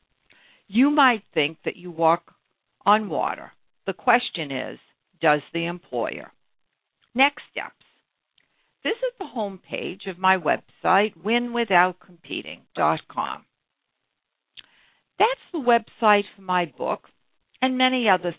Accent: American